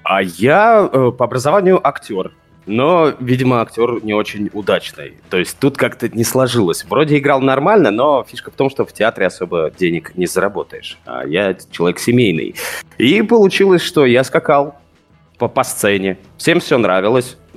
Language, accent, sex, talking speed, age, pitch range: Russian, native, male, 155 wpm, 20-39, 105-145 Hz